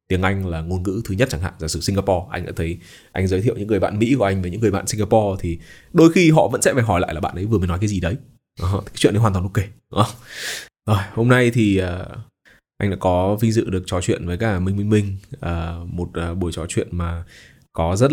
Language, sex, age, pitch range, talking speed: Vietnamese, male, 20-39, 85-115 Hz, 270 wpm